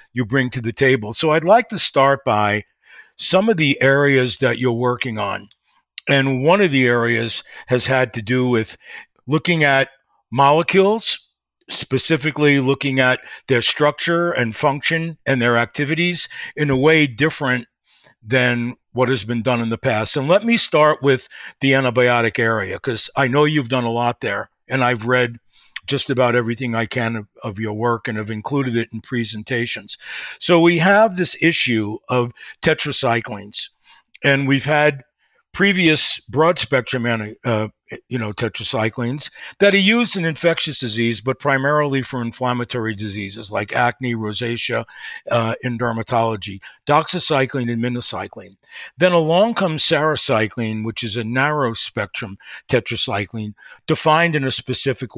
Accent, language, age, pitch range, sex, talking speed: American, English, 50-69, 115-150 Hz, male, 150 wpm